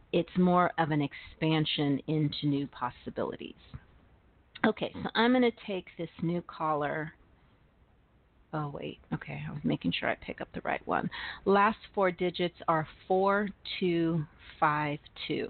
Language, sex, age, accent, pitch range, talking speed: English, female, 40-59, American, 155-215 Hz, 135 wpm